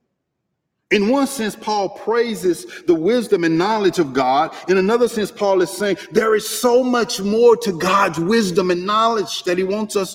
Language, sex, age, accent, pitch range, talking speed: English, male, 50-69, American, 185-245 Hz, 185 wpm